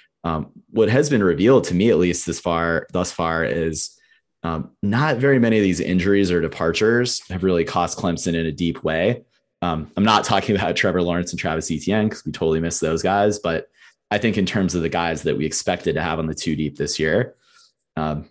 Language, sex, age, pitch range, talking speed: English, male, 30-49, 80-90 Hz, 220 wpm